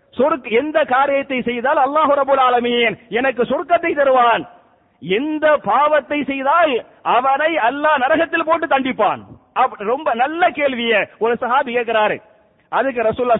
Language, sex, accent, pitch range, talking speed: English, male, Indian, 235-300 Hz, 120 wpm